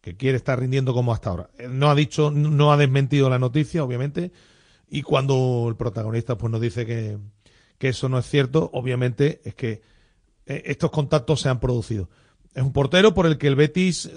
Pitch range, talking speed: 125-160 Hz, 185 wpm